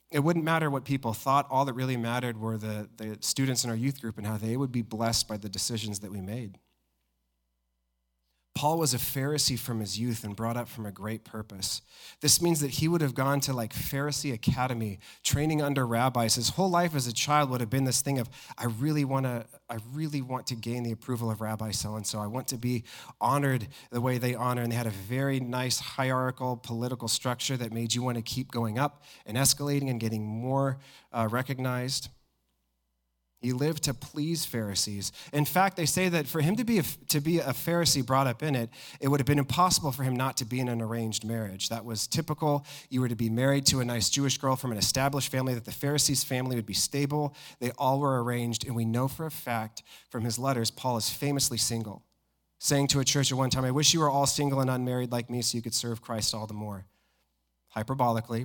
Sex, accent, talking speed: male, American, 225 wpm